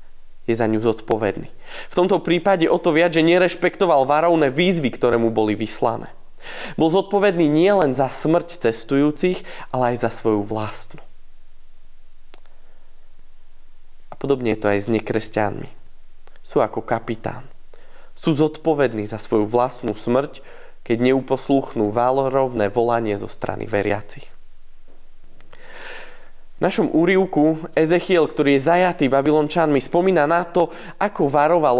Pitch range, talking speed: 115-160 Hz, 120 wpm